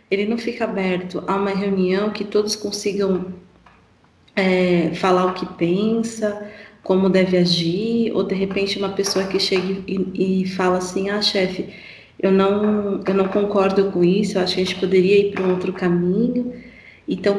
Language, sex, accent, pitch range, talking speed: Portuguese, female, Brazilian, 180-215 Hz, 175 wpm